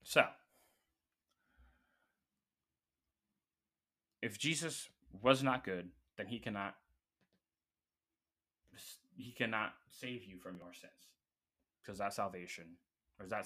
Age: 20-39